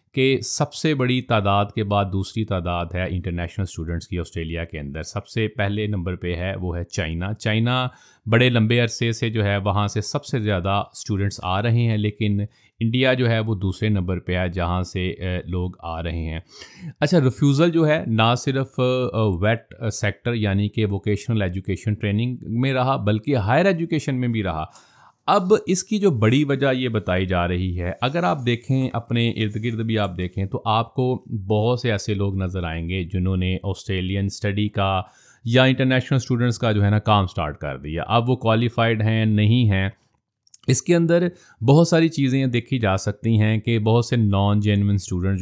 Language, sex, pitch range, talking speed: Urdu, male, 95-120 Hz, 190 wpm